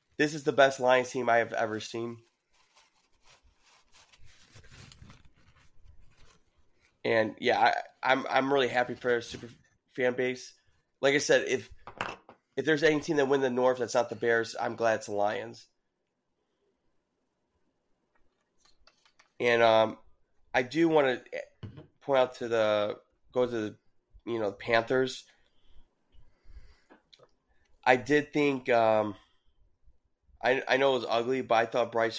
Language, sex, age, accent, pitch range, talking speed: English, male, 20-39, American, 115-130 Hz, 140 wpm